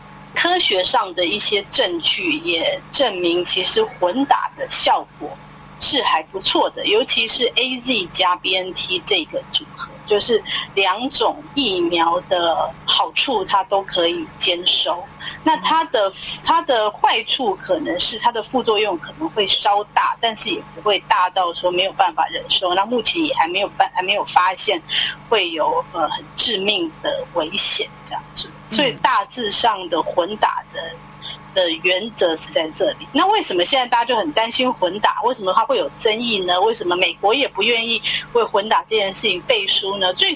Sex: female